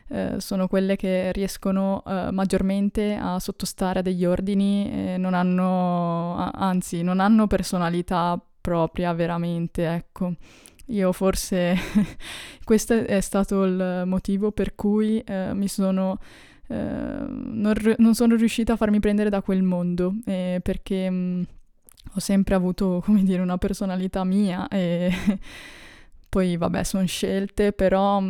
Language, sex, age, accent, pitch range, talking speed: Italian, female, 20-39, native, 180-200 Hz, 125 wpm